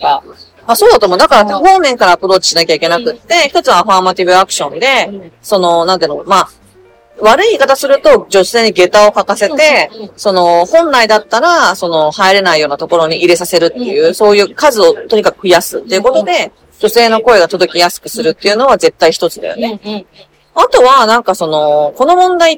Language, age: Japanese, 40-59